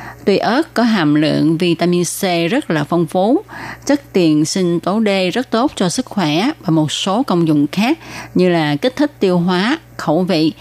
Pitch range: 155-210 Hz